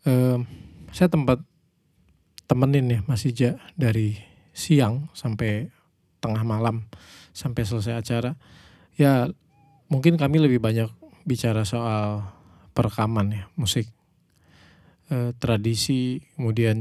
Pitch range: 100-125 Hz